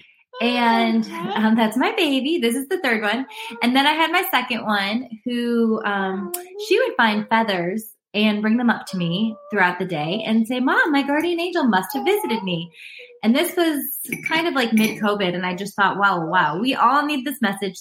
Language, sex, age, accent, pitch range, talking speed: English, female, 20-39, American, 195-265 Hz, 200 wpm